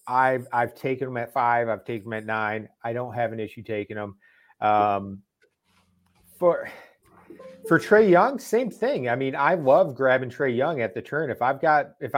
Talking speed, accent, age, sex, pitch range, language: 190 wpm, American, 30-49, male, 115-145 Hz, English